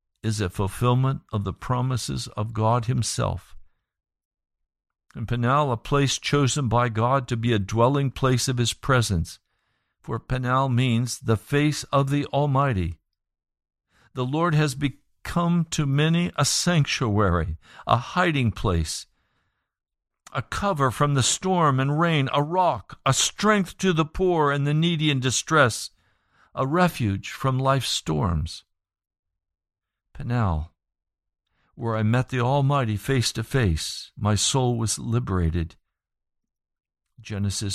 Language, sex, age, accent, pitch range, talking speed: English, male, 60-79, American, 105-145 Hz, 130 wpm